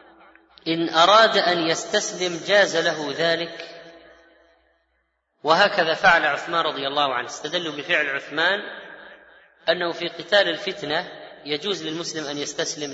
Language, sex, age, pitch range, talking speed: Arabic, female, 20-39, 150-185 Hz, 110 wpm